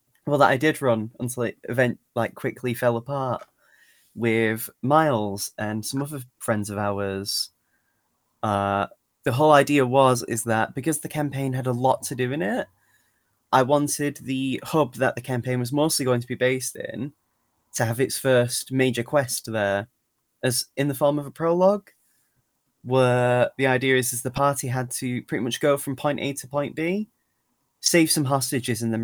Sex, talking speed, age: male, 180 wpm, 20-39